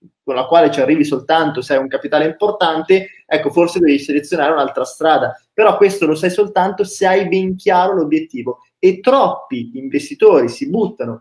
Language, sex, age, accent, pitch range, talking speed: Italian, male, 20-39, native, 150-205 Hz, 170 wpm